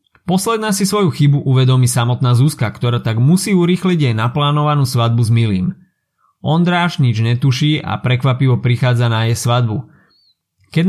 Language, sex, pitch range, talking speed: Slovak, male, 120-150 Hz, 145 wpm